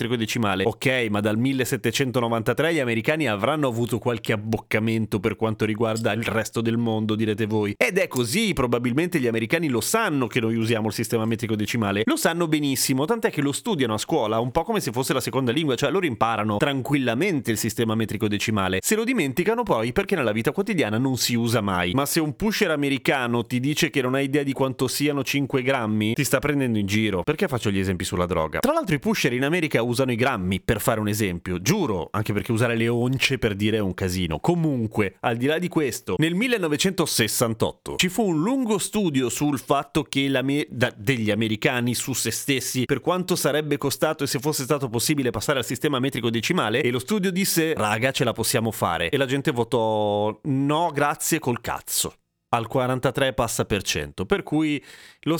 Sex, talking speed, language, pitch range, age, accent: male, 200 wpm, Italian, 115-150 Hz, 30-49, native